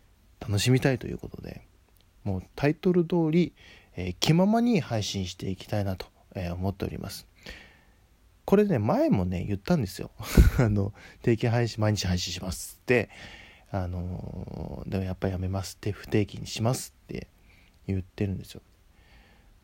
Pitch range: 90-125 Hz